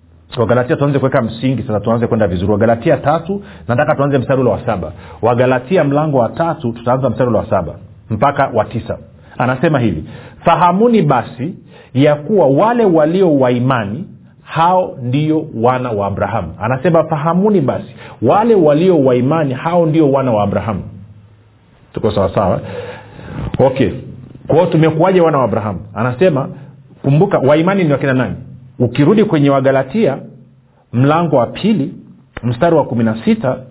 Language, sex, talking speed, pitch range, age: Swahili, male, 135 wpm, 120-165 Hz, 40-59